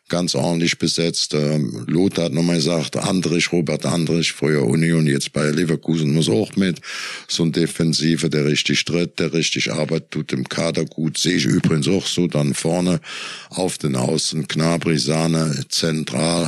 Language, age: German, 60-79